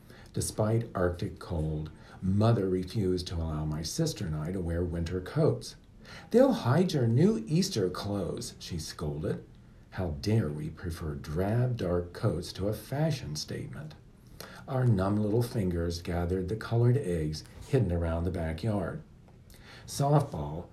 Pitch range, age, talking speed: 85-115 Hz, 50-69, 135 wpm